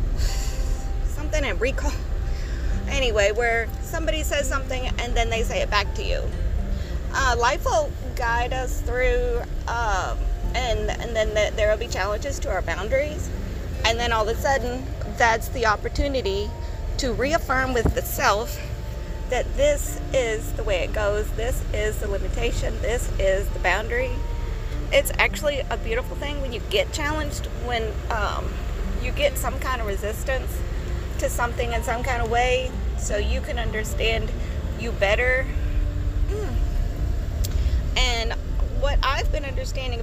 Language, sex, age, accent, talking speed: English, female, 30-49, American, 145 wpm